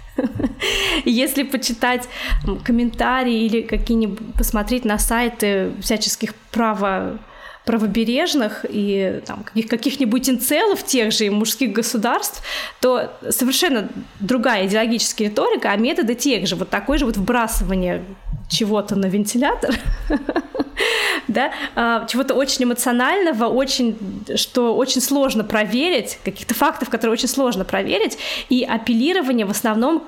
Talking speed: 100 wpm